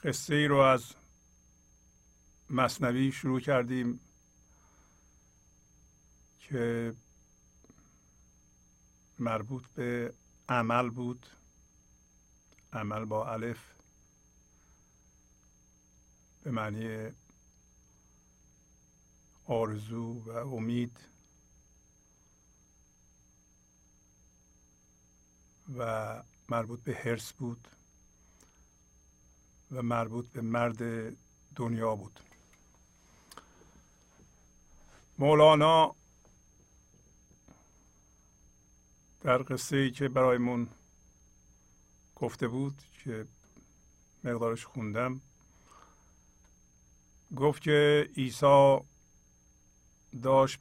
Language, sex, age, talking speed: Persian, male, 60-79, 55 wpm